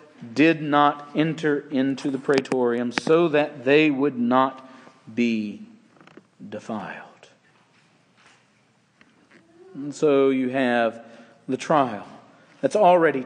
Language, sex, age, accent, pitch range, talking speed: English, male, 40-59, American, 150-190 Hz, 95 wpm